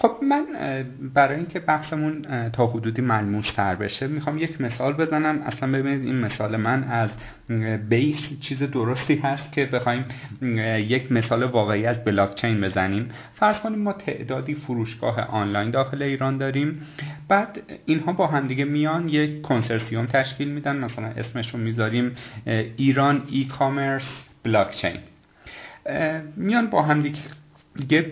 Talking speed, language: 130 wpm, Persian